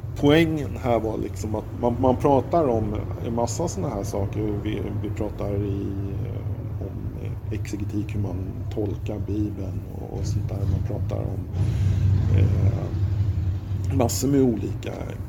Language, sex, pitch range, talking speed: Swedish, male, 100-110 Hz, 135 wpm